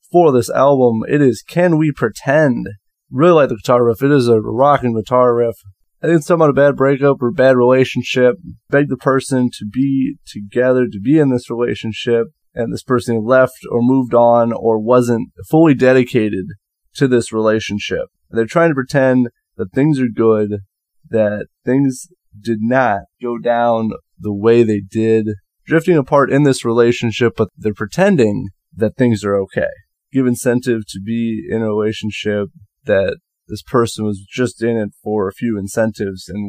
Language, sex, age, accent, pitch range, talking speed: English, male, 20-39, American, 105-125 Hz, 170 wpm